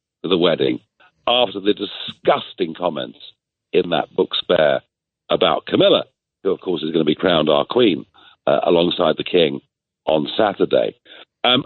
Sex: male